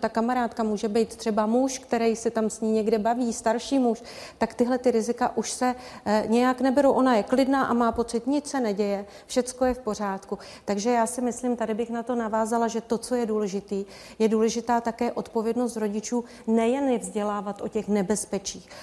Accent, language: native, Czech